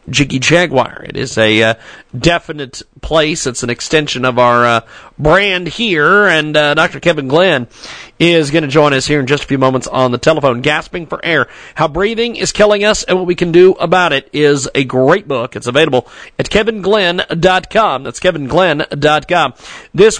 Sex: male